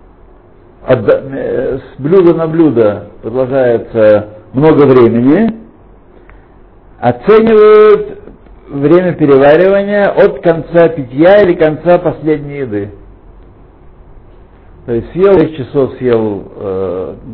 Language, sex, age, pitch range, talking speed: Russian, male, 60-79, 110-170 Hz, 85 wpm